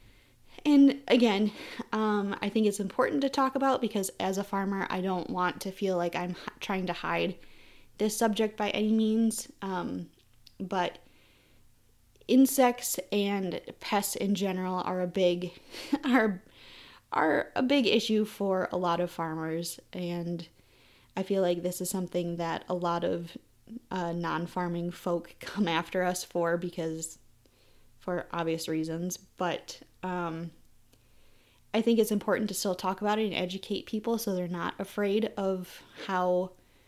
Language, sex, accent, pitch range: English, female, American, 170-210 Hz